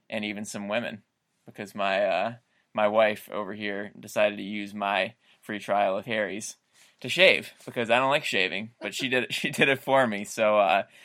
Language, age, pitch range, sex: English, 20-39, 105-130 Hz, male